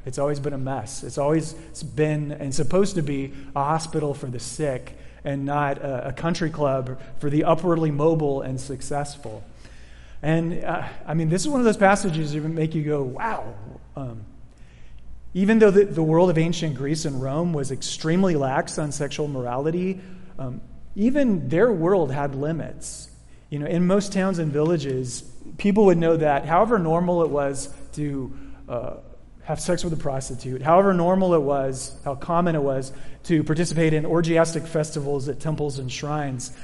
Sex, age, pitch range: male, 30-49, 135-170 Hz